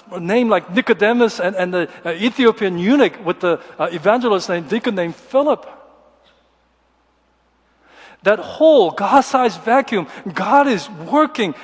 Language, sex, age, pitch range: Korean, male, 50-69, 200-260 Hz